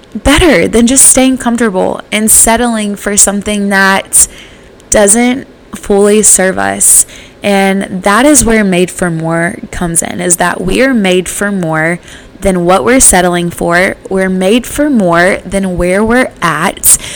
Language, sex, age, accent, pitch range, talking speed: English, female, 20-39, American, 175-210 Hz, 150 wpm